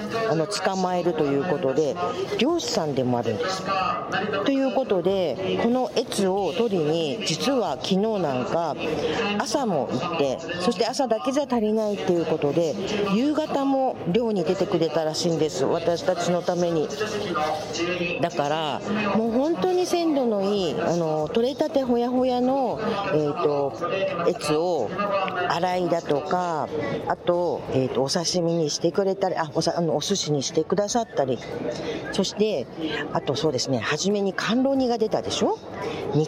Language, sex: Japanese, female